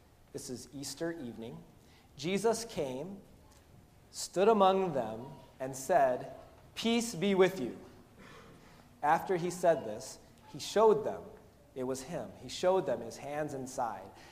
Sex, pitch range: male, 125-185 Hz